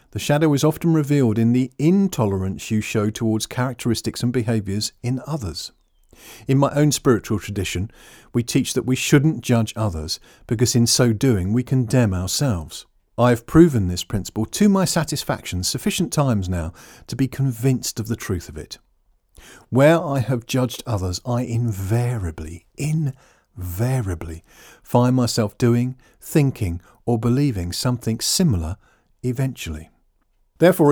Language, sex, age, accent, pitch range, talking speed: English, male, 50-69, British, 105-145 Hz, 140 wpm